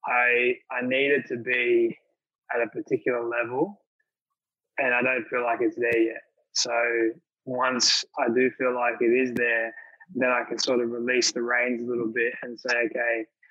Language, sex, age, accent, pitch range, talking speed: English, male, 20-39, Australian, 120-130 Hz, 180 wpm